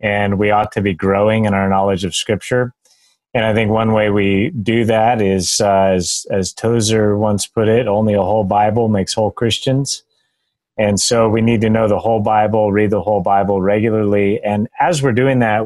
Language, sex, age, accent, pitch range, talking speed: English, male, 30-49, American, 100-115 Hz, 205 wpm